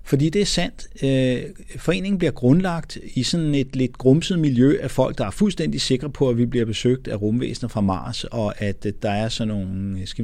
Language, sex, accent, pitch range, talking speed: Danish, male, native, 105-150 Hz, 205 wpm